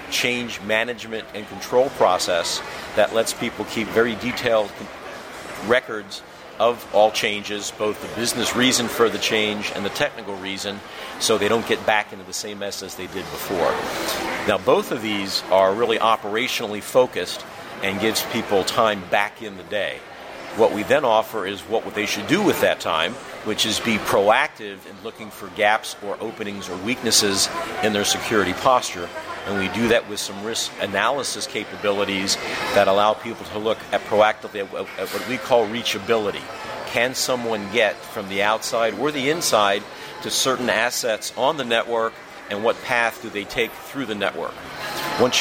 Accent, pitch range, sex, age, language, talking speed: American, 100-115 Hz, male, 50-69, English, 170 wpm